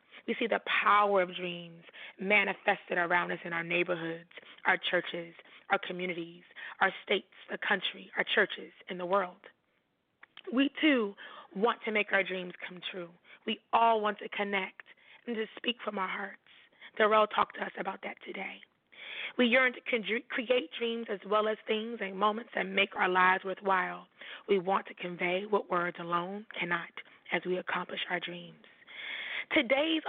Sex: female